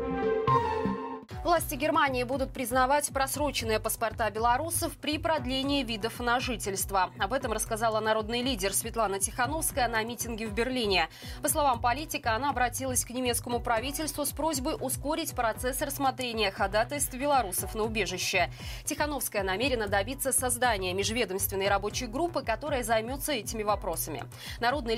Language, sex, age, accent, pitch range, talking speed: Russian, female, 20-39, native, 215-280 Hz, 125 wpm